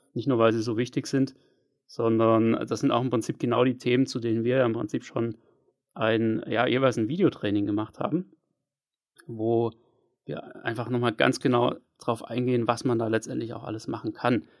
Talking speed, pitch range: 190 wpm, 110-125 Hz